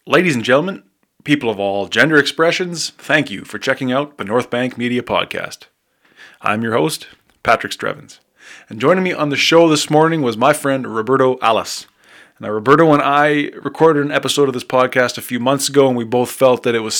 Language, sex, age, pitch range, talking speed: English, male, 20-39, 120-145 Hz, 200 wpm